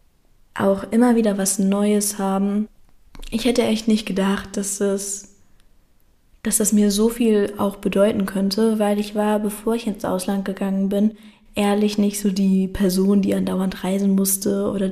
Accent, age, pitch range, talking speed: German, 10-29, 195-220 Hz, 160 wpm